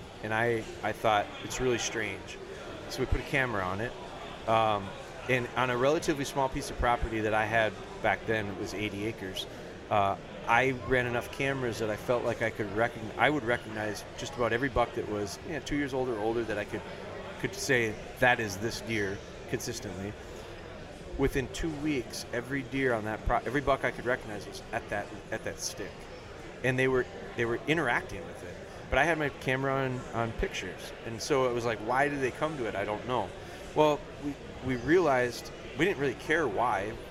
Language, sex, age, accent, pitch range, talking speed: English, male, 30-49, American, 105-130 Hz, 205 wpm